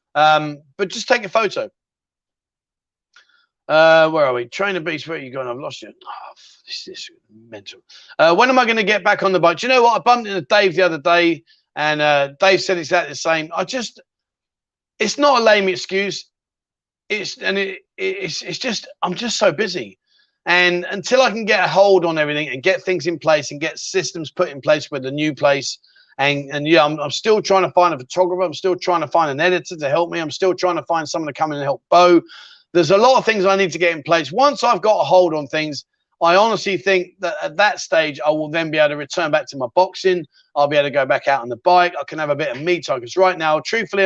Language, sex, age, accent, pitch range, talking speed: English, male, 30-49, British, 155-205 Hz, 250 wpm